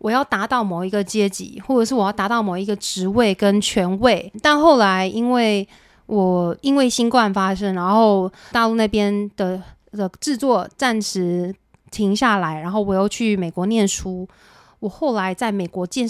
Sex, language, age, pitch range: female, Chinese, 20-39, 190-240 Hz